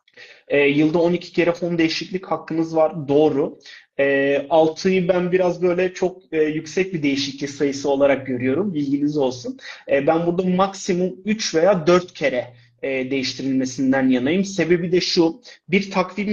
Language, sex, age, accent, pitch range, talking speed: Turkish, male, 30-49, native, 145-190 Hz, 145 wpm